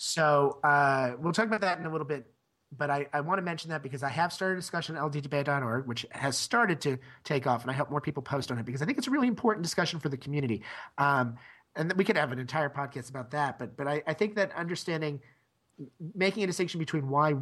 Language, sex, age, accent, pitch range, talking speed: English, male, 30-49, American, 125-150 Hz, 250 wpm